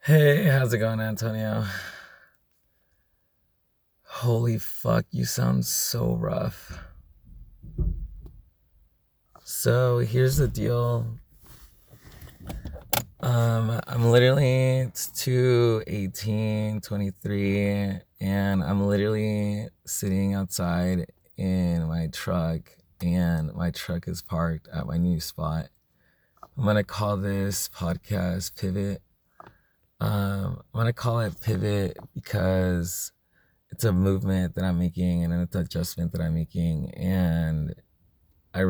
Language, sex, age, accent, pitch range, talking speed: English, male, 20-39, American, 85-105 Hz, 100 wpm